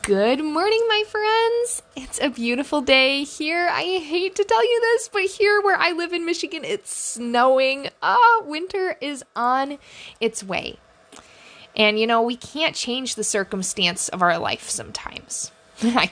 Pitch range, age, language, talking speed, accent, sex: 210-310 Hz, 10-29, English, 165 wpm, American, female